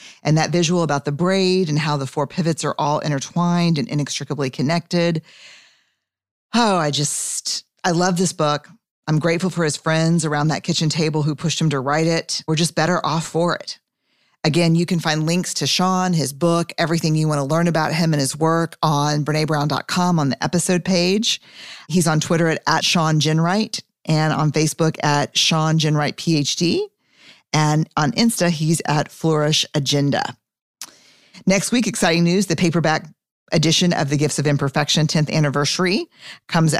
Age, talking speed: 40-59, 175 wpm